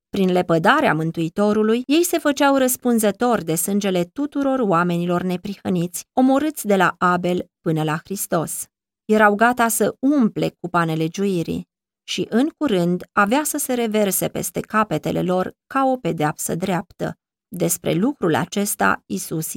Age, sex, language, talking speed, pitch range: 30-49, female, Romanian, 135 wpm, 175-230 Hz